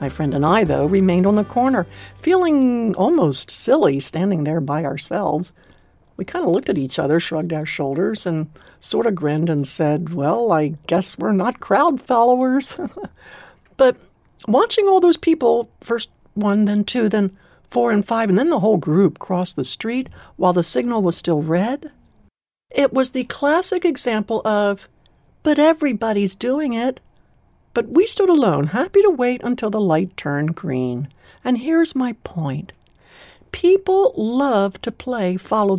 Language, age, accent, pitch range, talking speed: English, 60-79, American, 180-275 Hz, 165 wpm